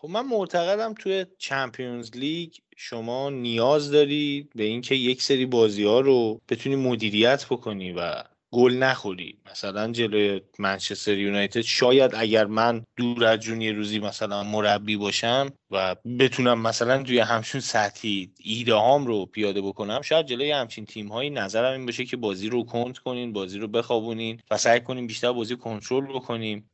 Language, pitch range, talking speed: Persian, 105-130 Hz, 150 wpm